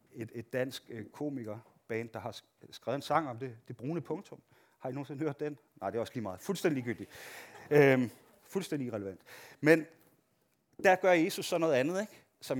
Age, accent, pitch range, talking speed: 30-49, native, 125-170 Hz, 185 wpm